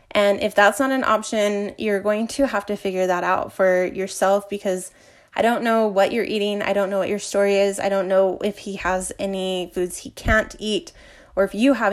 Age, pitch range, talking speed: 20-39, 190-220 Hz, 225 wpm